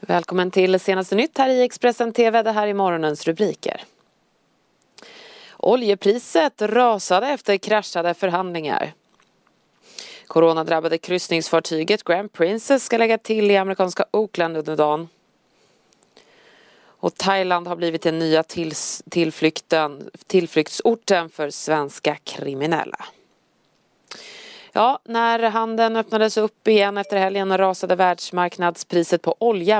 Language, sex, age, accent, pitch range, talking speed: Swedish, female, 30-49, native, 160-205 Hz, 105 wpm